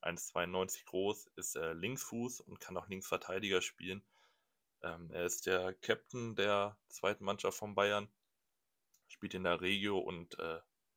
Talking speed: 135 wpm